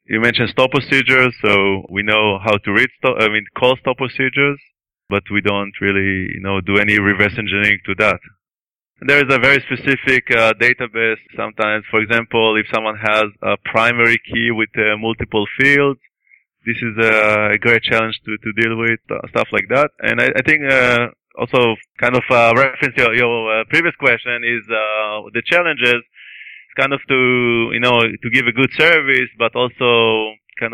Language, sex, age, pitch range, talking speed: English, male, 20-39, 105-125 Hz, 185 wpm